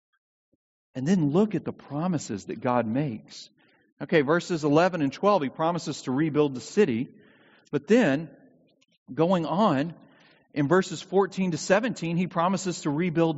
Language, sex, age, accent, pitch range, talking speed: English, male, 40-59, American, 135-200 Hz, 150 wpm